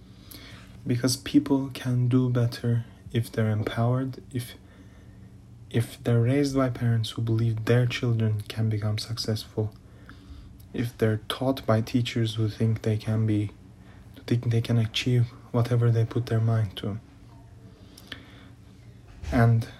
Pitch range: 110-125 Hz